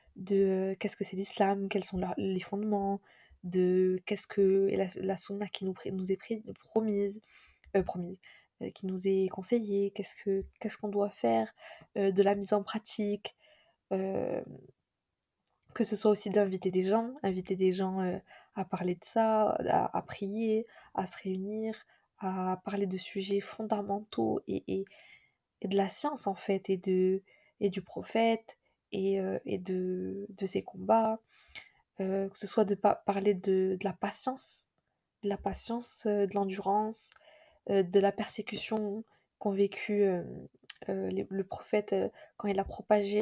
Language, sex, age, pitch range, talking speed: French, female, 20-39, 190-220 Hz, 160 wpm